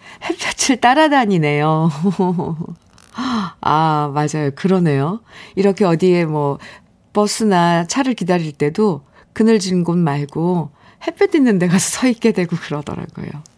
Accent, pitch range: native, 160-225 Hz